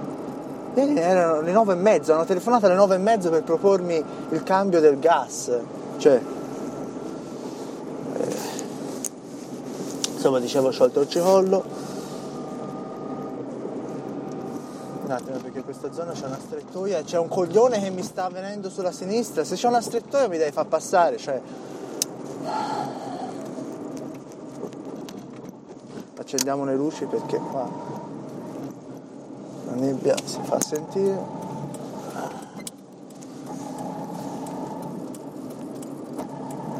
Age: 30-49